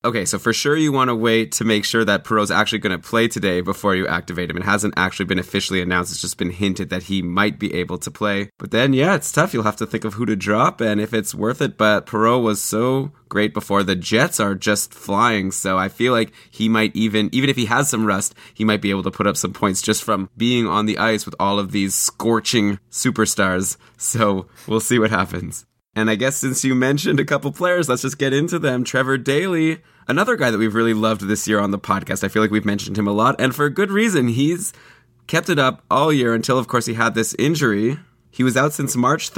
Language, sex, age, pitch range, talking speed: English, male, 20-39, 100-125 Hz, 250 wpm